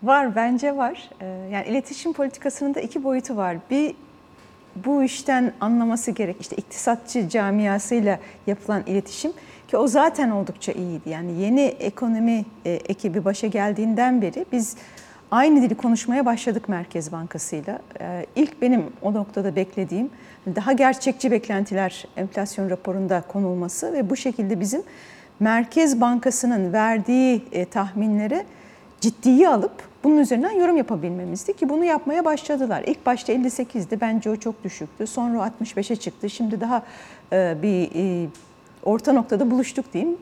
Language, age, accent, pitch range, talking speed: Turkish, 40-59, native, 200-275 Hz, 125 wpm